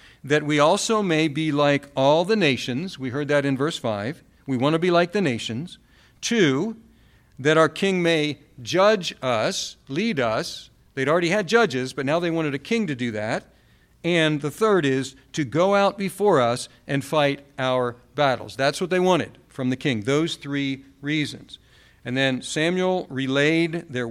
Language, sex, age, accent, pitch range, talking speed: English, male, 50-69, American, 125-155 Hz, 180 wpm